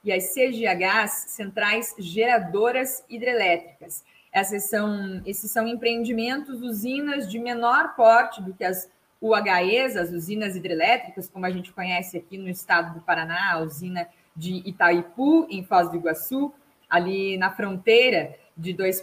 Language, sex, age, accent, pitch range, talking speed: Portuguese, female, 20-39, Brazilian, 190-245 Hz, 130 wpm